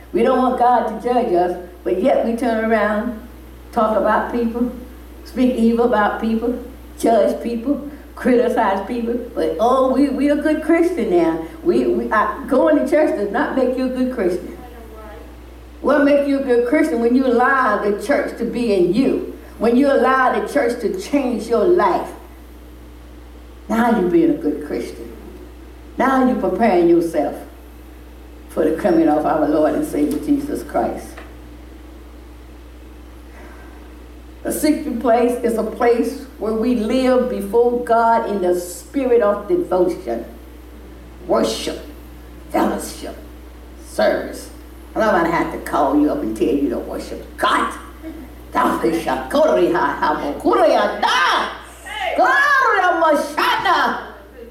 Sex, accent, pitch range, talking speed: female, American, 170-275 Hz, 135 wpm